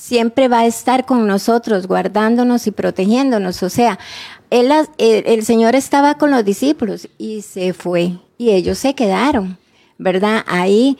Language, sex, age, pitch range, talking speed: Spanish, female, 30-49, 210-260 Hz, 155 wpm